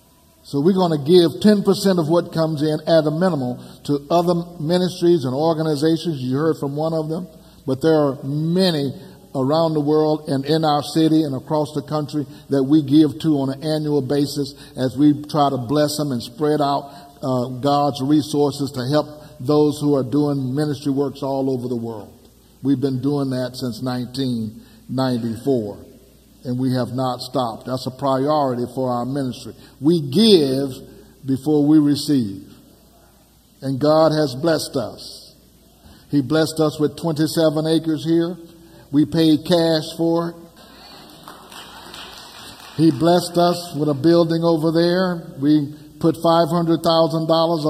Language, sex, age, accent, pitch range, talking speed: English, male, 50-69, American, 140-165 Hz, 150 wpm